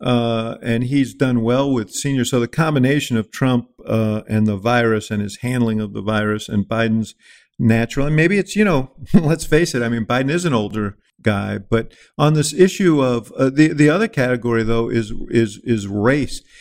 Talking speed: 200 wpm